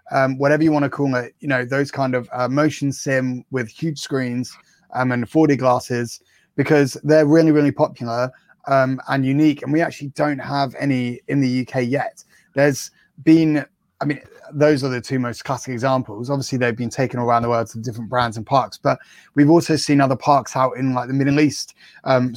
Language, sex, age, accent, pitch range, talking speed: English, male, 20-39, British, 120-145 Hz, 200 wpm